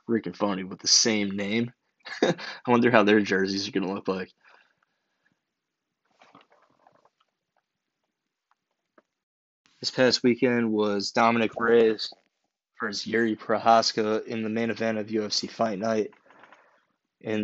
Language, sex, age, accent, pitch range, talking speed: English, male, 20-39, American, 105-125 Hz, 115 wpm